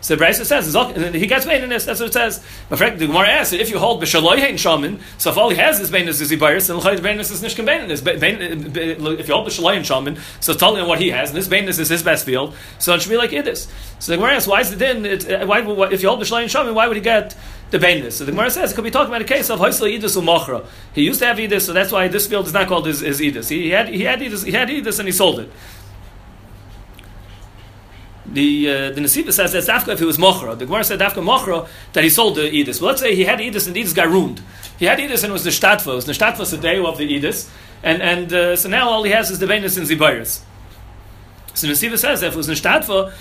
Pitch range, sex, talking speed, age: 150-215 Hz, male, 275 wpm, 30-49